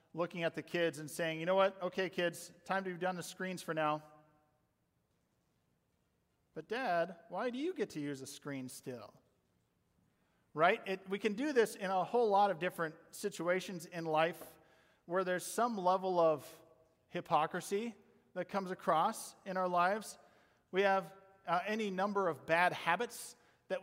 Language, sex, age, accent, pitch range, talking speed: English, male, 40-59, American, 160-195 Hz, 165 wpm